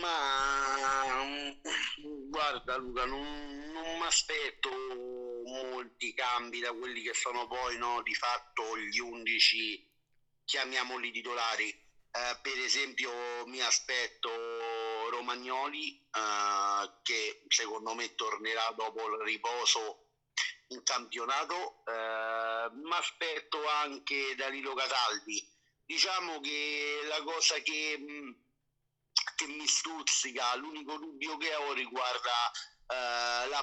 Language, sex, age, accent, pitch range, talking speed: Italian, male, 50-69, native, 120-150 Hz, 105 wpm